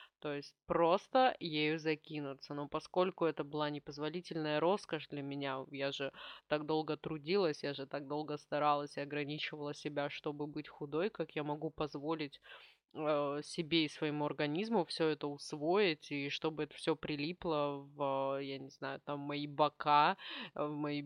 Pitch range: 145-165 Hz